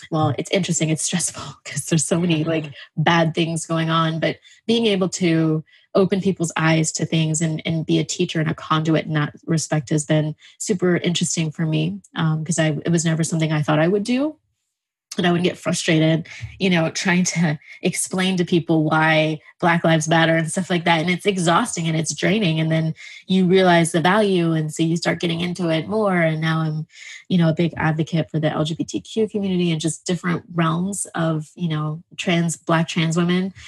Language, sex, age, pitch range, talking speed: English, female, 20-39, 160-180 Hz, 205 wpm